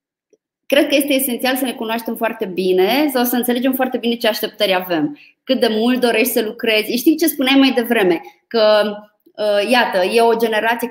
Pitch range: 210-280 Hz